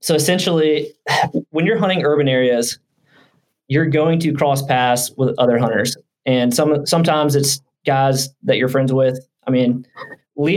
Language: English